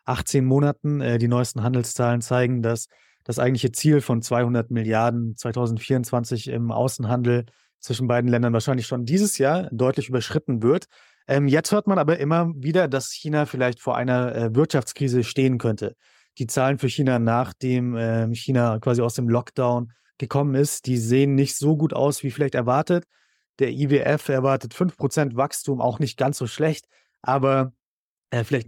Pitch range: 125-145 Hz